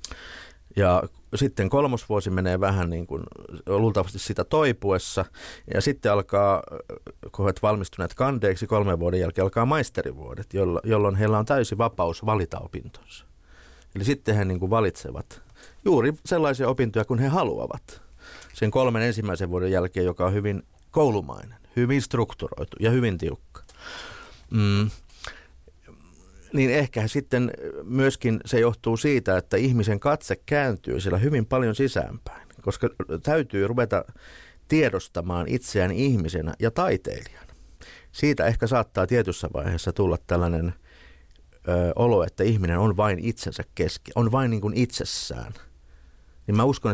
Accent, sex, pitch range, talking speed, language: native, male, 90-120 Hz, 130 wpm, Finnish